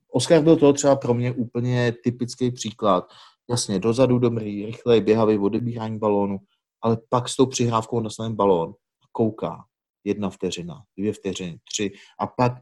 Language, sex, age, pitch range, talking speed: Czech, male, 30-49, 105-120 Hz, 145 wpm